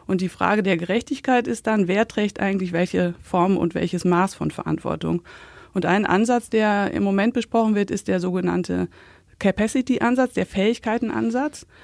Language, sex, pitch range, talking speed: German, female, 185-220 Hz, 155 wpm